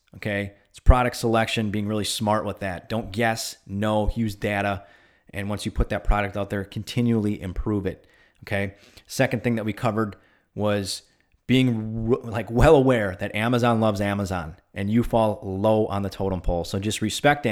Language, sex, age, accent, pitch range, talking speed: English, male, 30-49, American, 100-120 Hz, 180 wpm